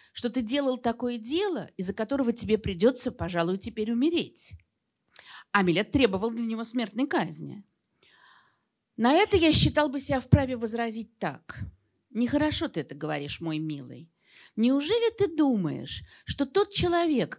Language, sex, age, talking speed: Russian, female, 50-69, 135 wpm